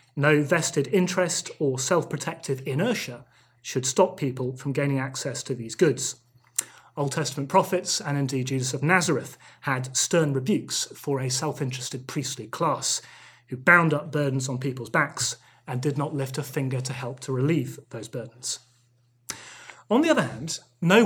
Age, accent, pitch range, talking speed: 30-49, British, 125-155 Hz, 155 wpm